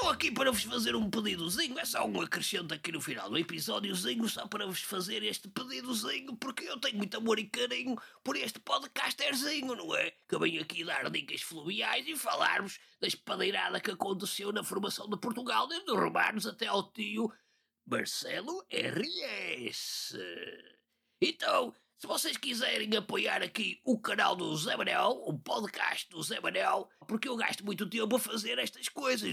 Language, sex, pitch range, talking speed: English, male, 215-285 Hz, 170 wpm